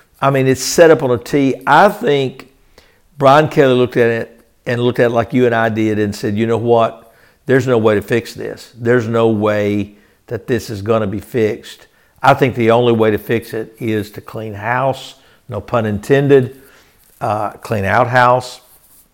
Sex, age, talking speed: male, 60-79, 200 wpm